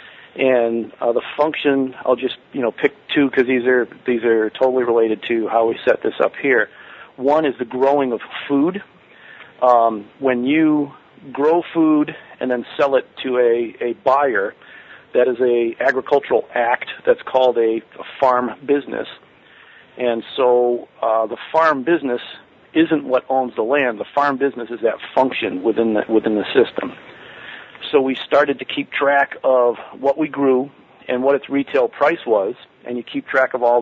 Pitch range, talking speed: 120-140 Hz, 175 wpm